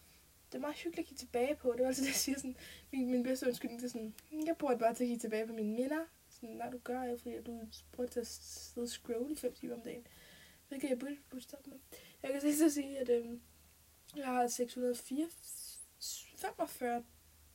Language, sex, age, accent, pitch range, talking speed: Danish, female, 10-29, native, 235-290 Hz, 225 wpm